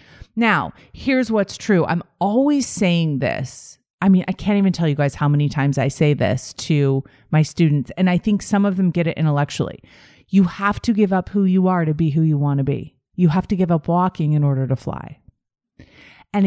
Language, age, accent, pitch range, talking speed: English, 30-49, American, 145-190 Hz, 220 wpm